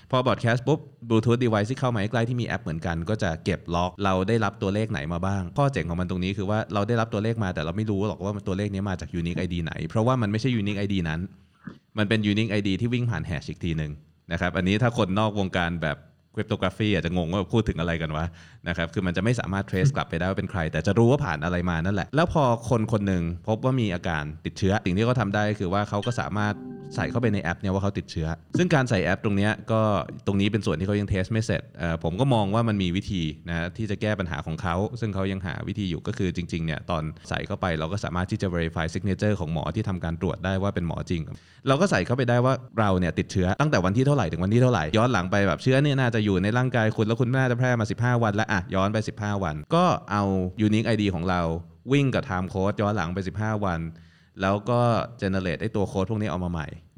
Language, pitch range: Thai, 90-110 Hz